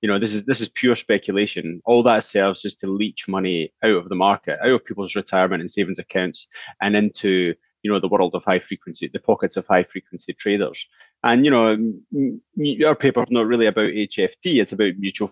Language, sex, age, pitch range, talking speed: Swedish, male, 30-49, 95-115 Hz, 210 wpm